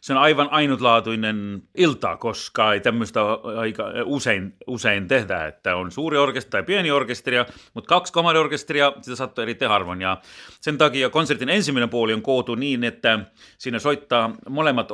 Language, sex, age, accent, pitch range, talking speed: Finnish, male, 30-49, native, 115-145 Hz, 155 wpm